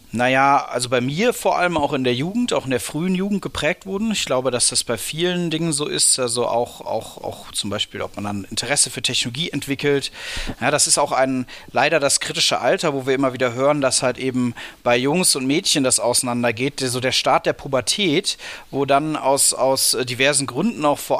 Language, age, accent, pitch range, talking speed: German, 40-59, German, 130-155 Hz, 210 wpm